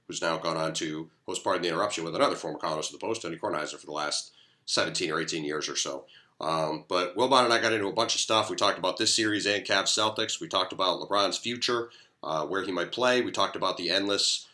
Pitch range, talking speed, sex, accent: 100-130 Hz, 260 wpm, male, American